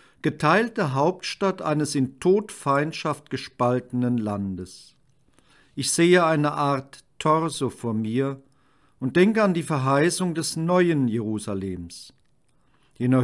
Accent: German